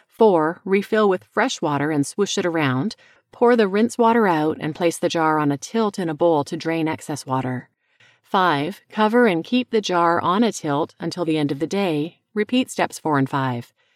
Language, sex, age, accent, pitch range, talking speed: English, female, 40-59, American, 150-200 Hz, 205 wpm